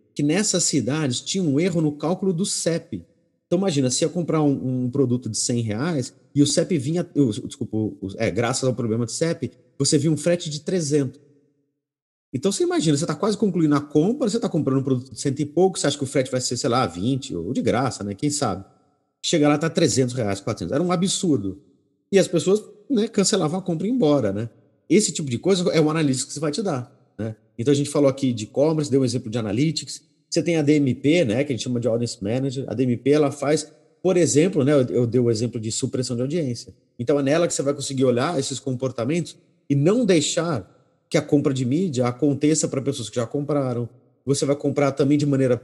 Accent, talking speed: Brazilian, 235 wpm